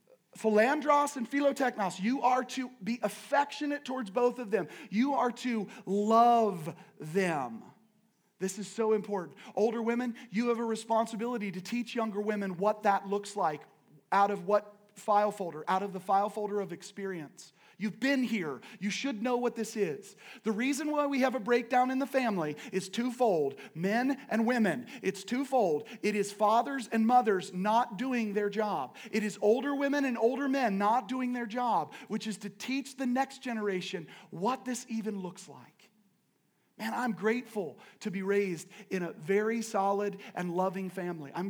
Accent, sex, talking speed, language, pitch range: American, male, 170 wpm, English, 200-250 Hz